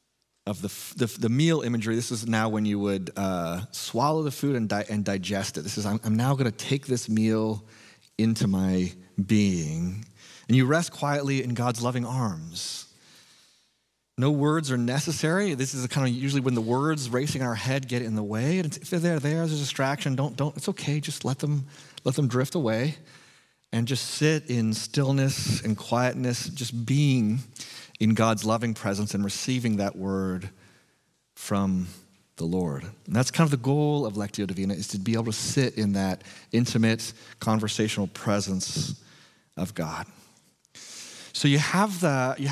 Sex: male